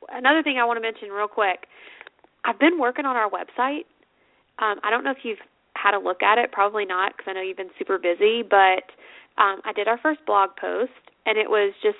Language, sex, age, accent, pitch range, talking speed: English, female, 20-39, American, 195-235 Hz, 230 wpm